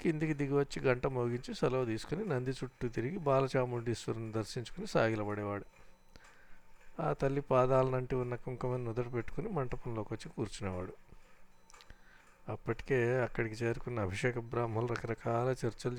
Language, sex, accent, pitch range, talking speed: Telugu, male, native, 115-145 Hz, 115 wpm